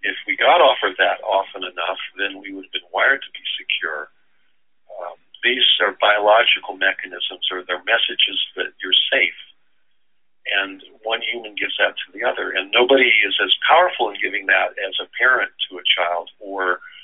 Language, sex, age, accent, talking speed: English, male, 50-69, American, 175 wpm